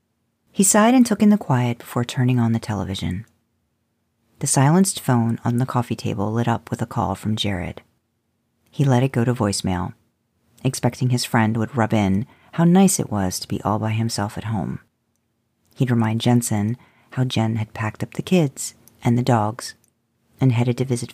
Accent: American